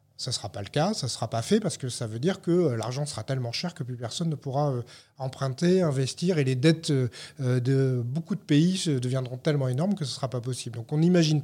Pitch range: 130-165 Hz